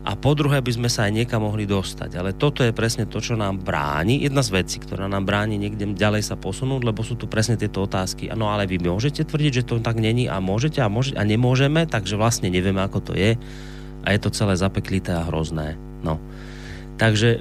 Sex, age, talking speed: male, 30-49, 220 wpm